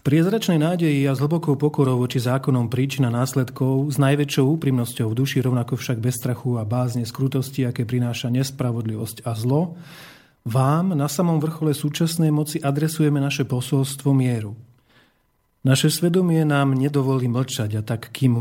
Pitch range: 125-150 Hz